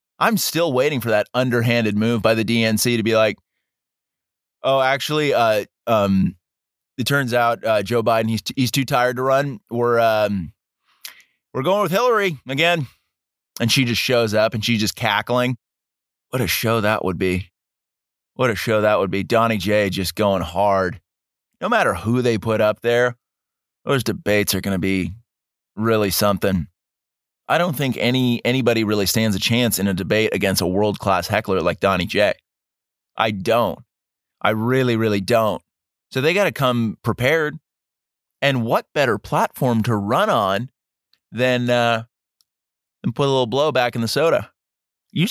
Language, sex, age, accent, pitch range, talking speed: English, male, 20-39, American, 105-125 Hz, 165 wpm